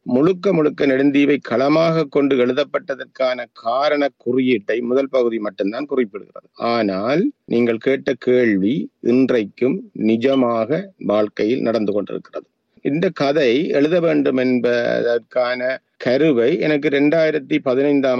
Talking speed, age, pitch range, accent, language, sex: 100 wpm, 50-69, 120-145 Hz, native, Tamil, male